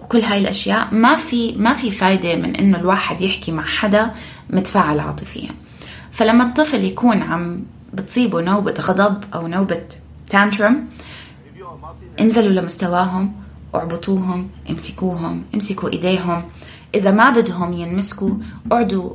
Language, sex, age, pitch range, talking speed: Arabic, female, 20-39, 180-225 Hz, 115 wpm